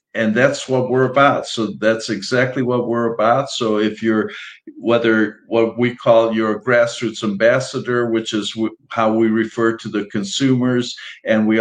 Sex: male